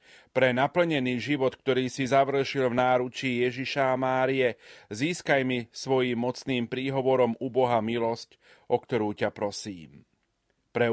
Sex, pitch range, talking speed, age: male, 115-135 Hz, 125 wpm, 30-49